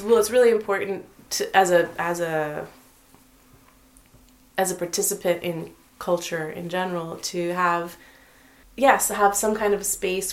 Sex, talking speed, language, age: female, 145 wpm, Danish, 20-39